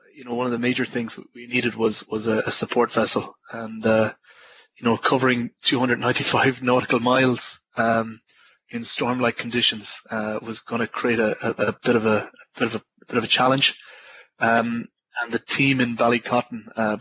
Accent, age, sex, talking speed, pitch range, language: Irish, 20-39, male, 195 wpm, 115-125 Hz, English